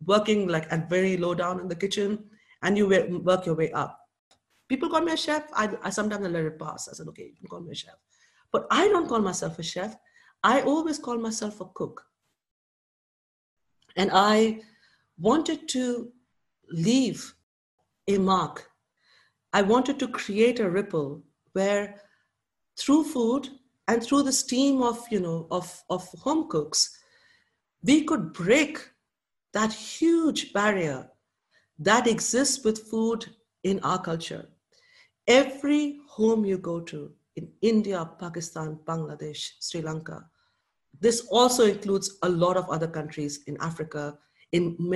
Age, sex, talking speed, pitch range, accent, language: 50-69, female, 145 wpm, 165-240 Hz, Indian, English